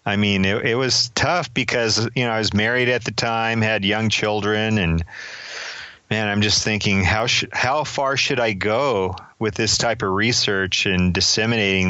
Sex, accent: male, American